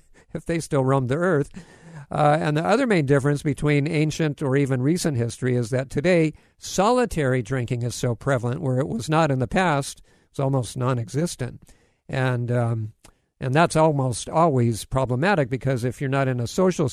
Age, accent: 50-69, American